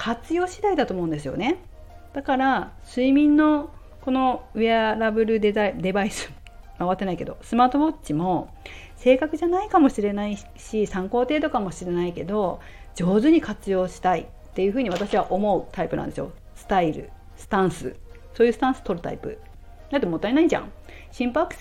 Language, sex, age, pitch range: Japanese, female, 40-59, 175-270 Hz